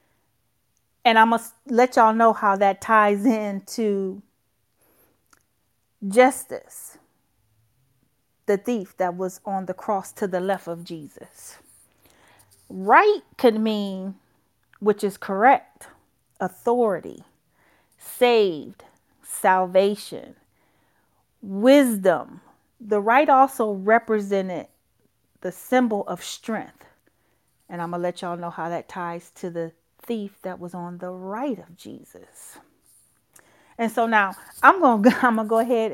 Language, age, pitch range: English, 40-59, 185-235 Hz